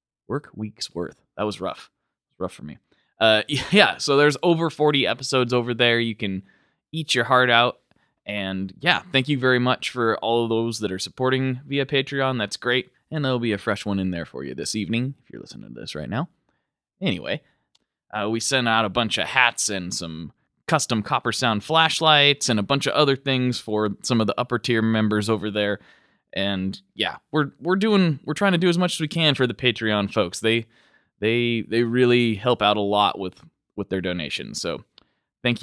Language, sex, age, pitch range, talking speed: English, male, 20-39, 105-145 Hz, 205 wpm